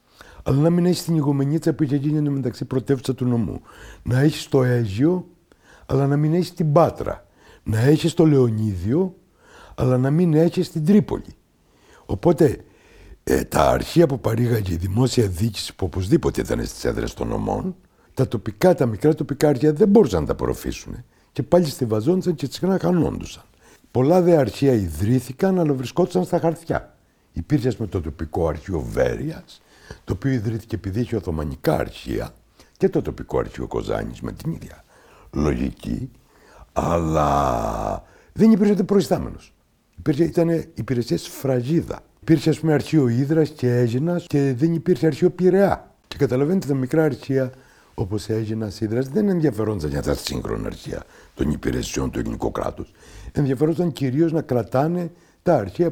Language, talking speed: Greek, 150 wpm